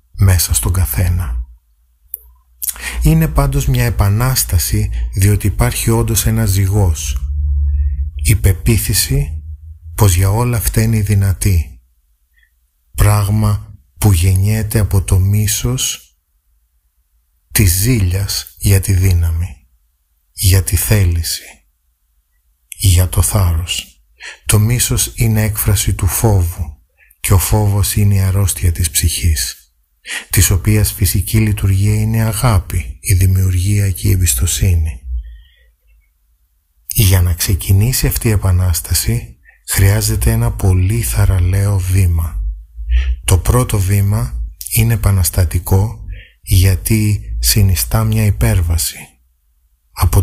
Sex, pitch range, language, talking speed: male, 75-105 Hz, Greek, 100 wpm